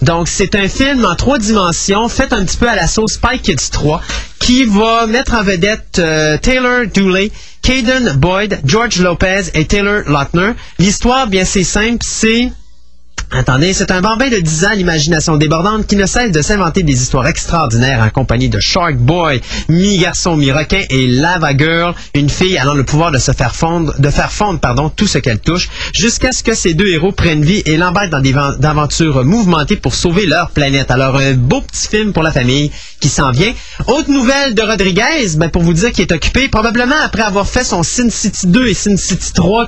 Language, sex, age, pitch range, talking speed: French, male, 30-49, 155-215 Hz, 205 wpm